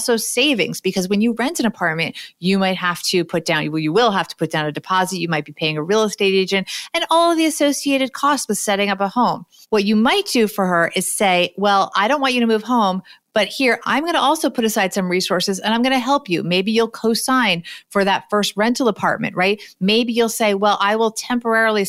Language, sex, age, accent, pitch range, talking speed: English, female, 30-49, American, 185-240 Hz, 245 wpm